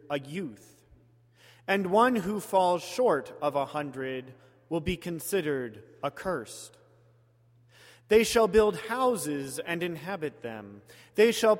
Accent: American